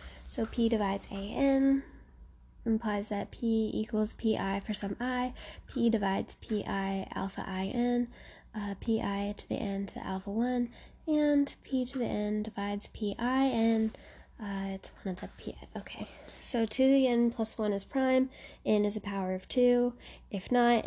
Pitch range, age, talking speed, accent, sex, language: 190-245 Hz, 10-29, 175 wpm, American, female, English